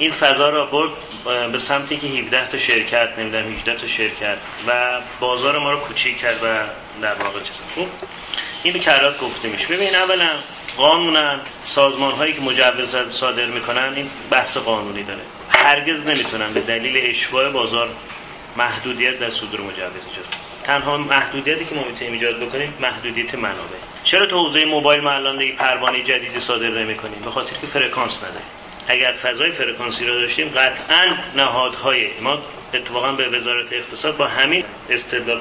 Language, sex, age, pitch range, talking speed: Persian, male, 30-49, 120-145 Hz, 150 wpm